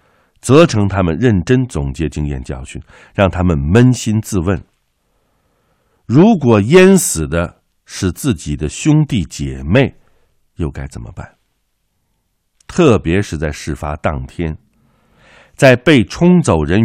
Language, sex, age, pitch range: Chinese, male, 60-79, 75-110 Hz